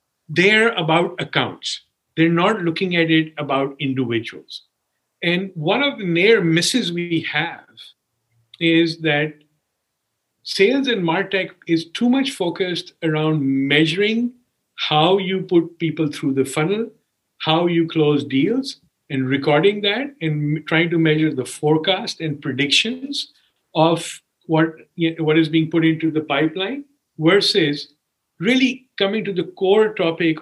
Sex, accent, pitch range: male, Indian, 150-195 Hz